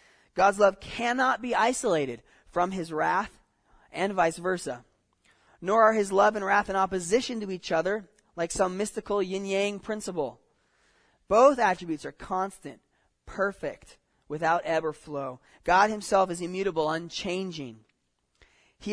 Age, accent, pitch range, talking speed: 20-39, American, 150-195 Hz, 135 wpm